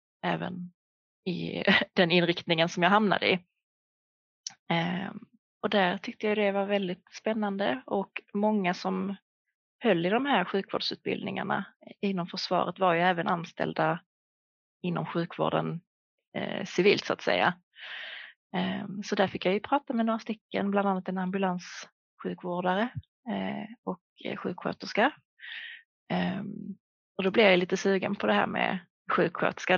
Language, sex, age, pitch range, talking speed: Swedish, female, 30-49, 180-210 Hz, 125 wpm